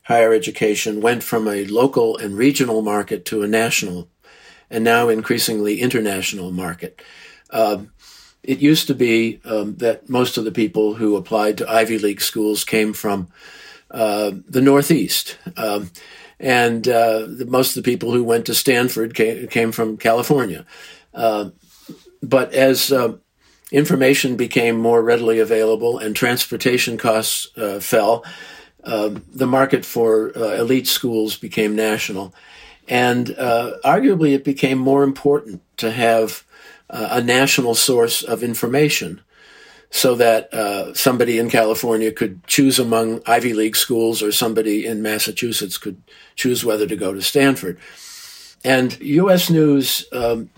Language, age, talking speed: English, 50-69, 140 wpm